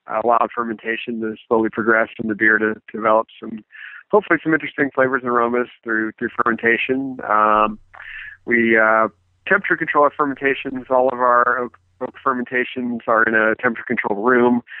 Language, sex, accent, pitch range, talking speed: English, male, American, 110-130 Hz, 160 wpm